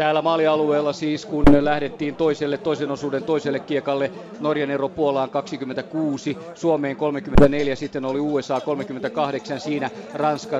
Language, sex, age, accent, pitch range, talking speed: Finnish, male, 40-59, native, 135-155 Hz, 120 wpm